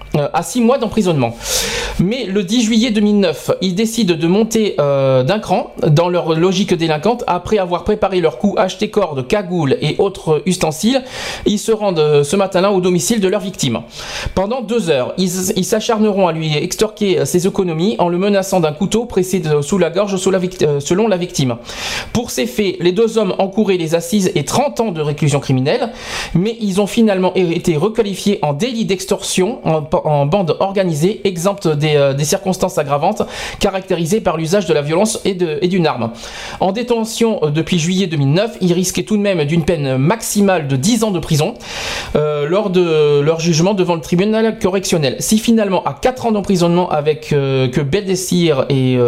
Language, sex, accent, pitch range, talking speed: French, male, French, 165-210 Hz, 185 wpm